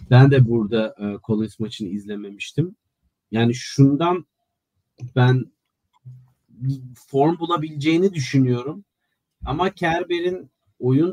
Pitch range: 120-145 Hz